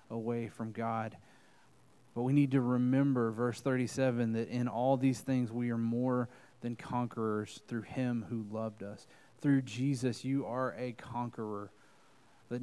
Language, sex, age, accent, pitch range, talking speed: English, male, 20-39, American, 115-140 Hz, 150 wpm